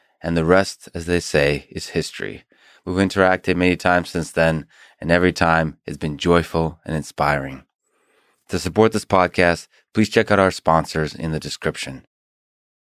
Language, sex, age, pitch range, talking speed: English, male, 20-39, 85-100 Hz, 160 wpm